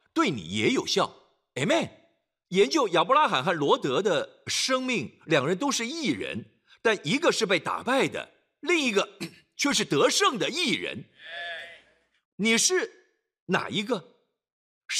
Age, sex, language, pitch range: 50-69, male, Chinese, 210-330 Hz